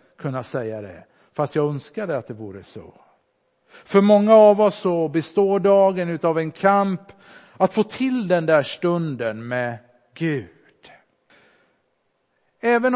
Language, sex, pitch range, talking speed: Swedish, male, 140-200 Hz, 135 wpm